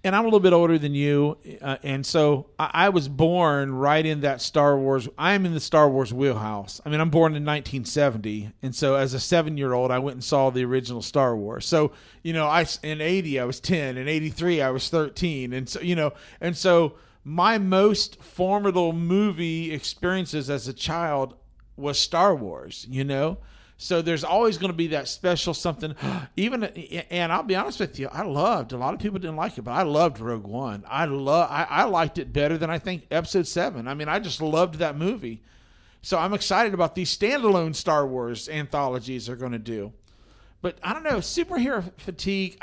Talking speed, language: 205 wpm, English